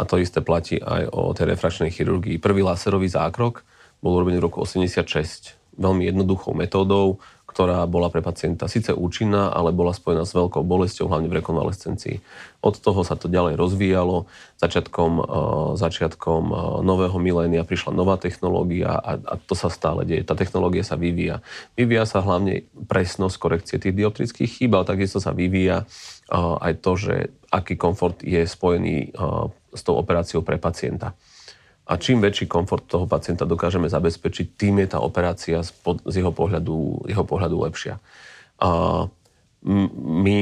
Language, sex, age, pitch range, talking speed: Slovak, male, 30-49, 85-95 Hz, 150 wpm